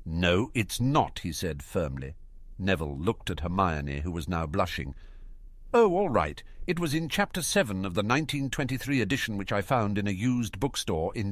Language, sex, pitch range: English, male, 85-125 Hz